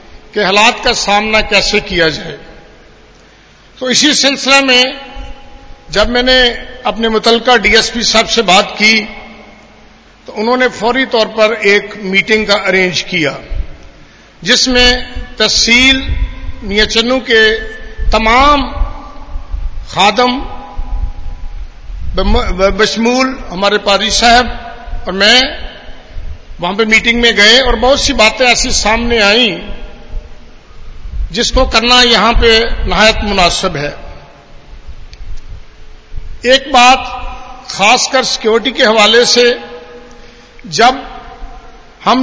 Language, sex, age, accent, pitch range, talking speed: Hindi, male, 50-69, native, 205-255 Hz, 100 wpm